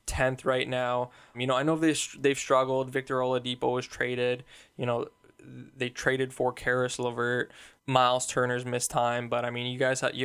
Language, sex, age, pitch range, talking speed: English, male, 10-29, 120-140 Hz, 185 wpm